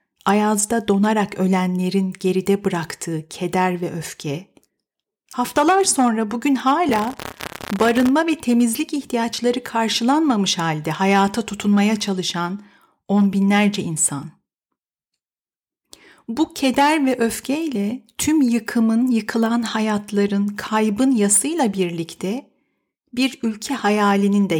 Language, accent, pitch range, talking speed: Turkish, native, 195-245 Hz, 95 wpm